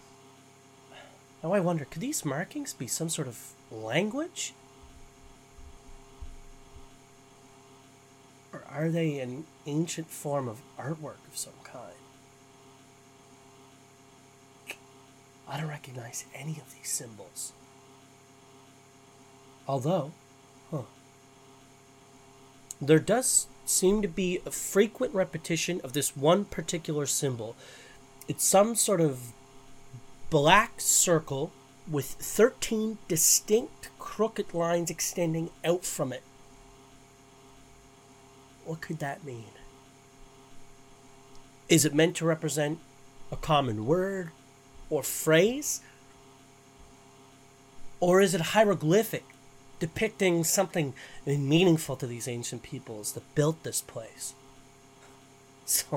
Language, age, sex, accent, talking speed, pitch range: English, 30-49, male, American, 95 wpm, 135-160 Hz